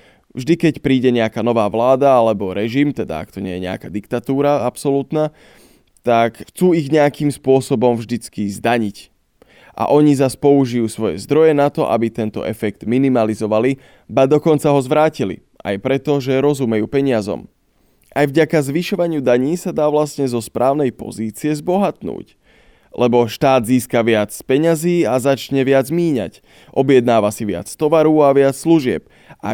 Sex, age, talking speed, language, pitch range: male, 20-39, 145 wpm, Slovak, 115-145 Hz